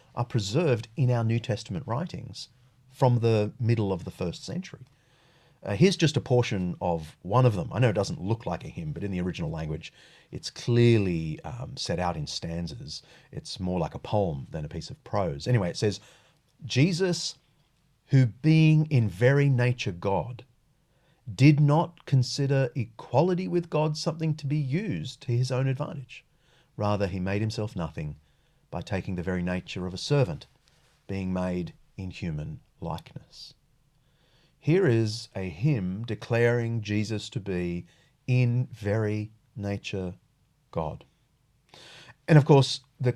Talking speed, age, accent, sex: 155 wpm, 40-59, Australian, male